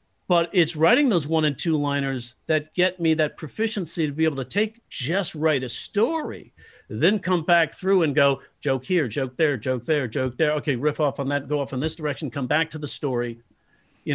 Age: 50-69